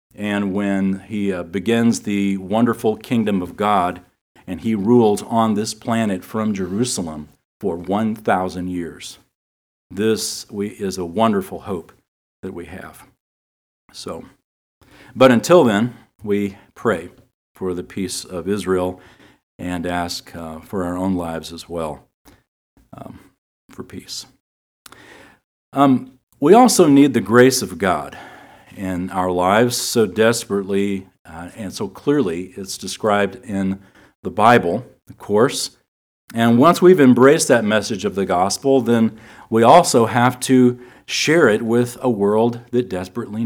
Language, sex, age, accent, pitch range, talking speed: English, male, 50-69, American, 90-120 Hz, 135 wpm